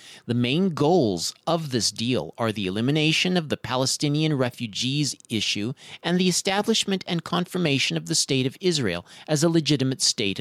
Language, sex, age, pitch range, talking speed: English, male, 40-59, 110-155 Hz, 160 wpm